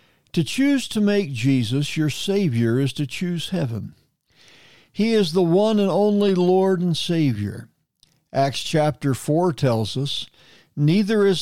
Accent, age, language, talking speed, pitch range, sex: American, 60-79, English, 140 wpm, 125-185 Hz, male